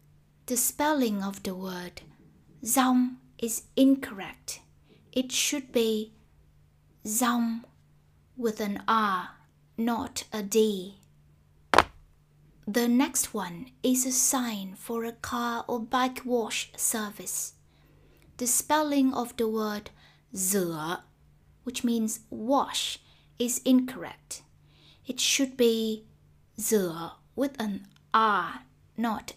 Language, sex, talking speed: Vietnamese, female, 100 wpm